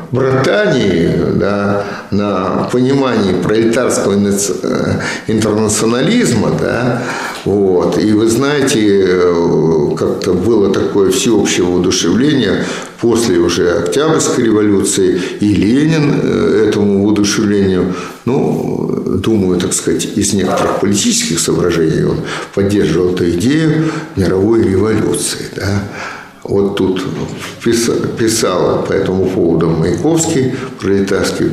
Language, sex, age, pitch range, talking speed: Russian, male, 50-69, 95-125 Hz, 90 wpm